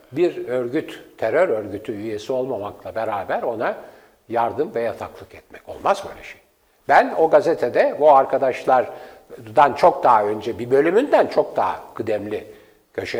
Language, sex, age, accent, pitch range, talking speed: Turkish, male, 60-79, native, 120-165 Hz, 130 wpm